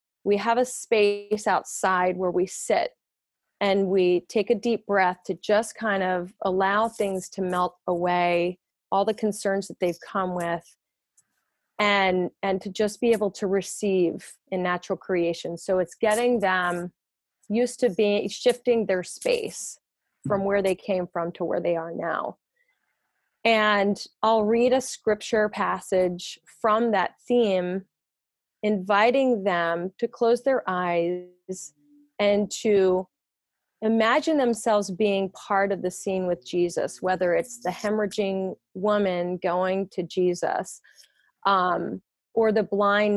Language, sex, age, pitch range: English, female, 30-49, 180-215 Hz